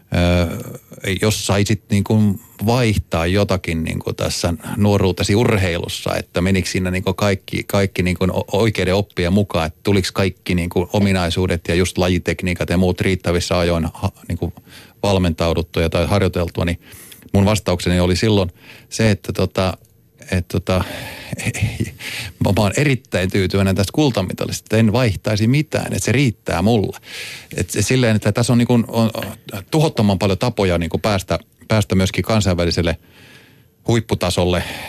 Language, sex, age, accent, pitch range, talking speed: Finnish, male, 30-49, native, 90-110 Hz, 140 wpm